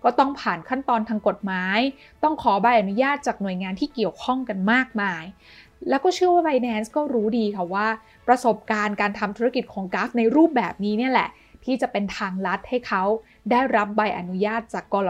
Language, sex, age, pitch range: Thai, female, 20-39, 195-245 Hz